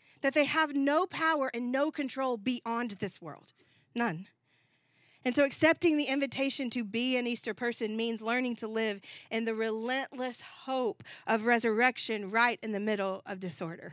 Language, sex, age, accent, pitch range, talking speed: English, female, 40-59, American, 220-270 Hz, 165 wpm